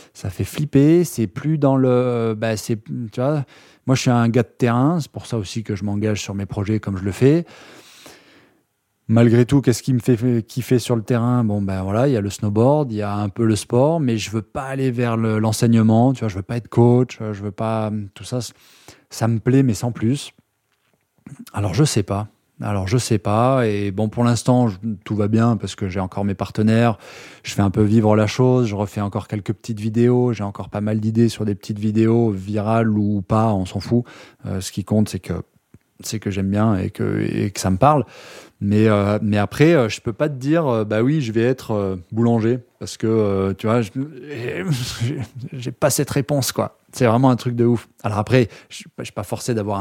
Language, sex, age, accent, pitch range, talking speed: French, male, 20-39, French, 105-125 Hz, 235 wpm